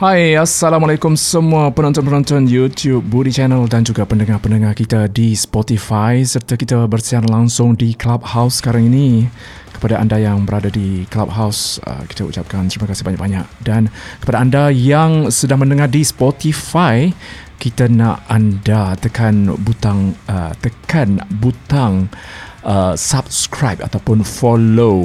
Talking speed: 120 wpm